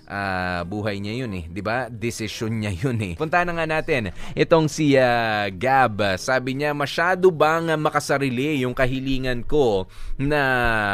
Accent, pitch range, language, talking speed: Filipino, 100-130 Hz, English, 150 wpm